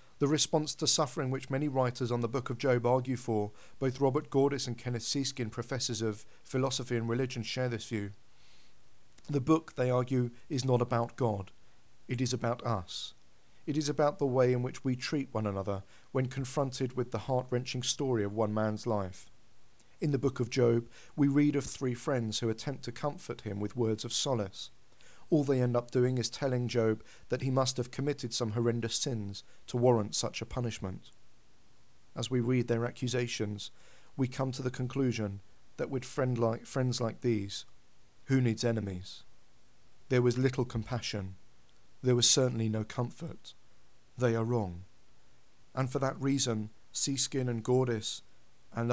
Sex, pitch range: male, 115-135 Hz